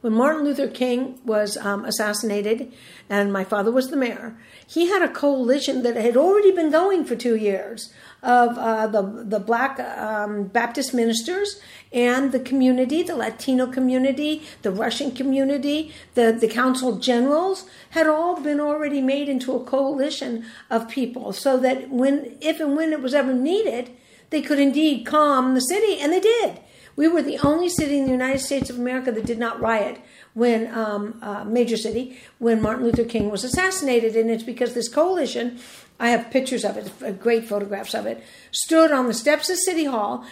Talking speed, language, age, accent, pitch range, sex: 180 wpm, English, 60-79, American, 230-295 Hz, female